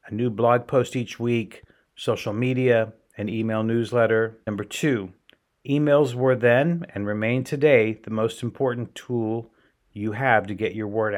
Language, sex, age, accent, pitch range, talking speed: English, male, 50-69, American, 110-130 Hz, 150 wpm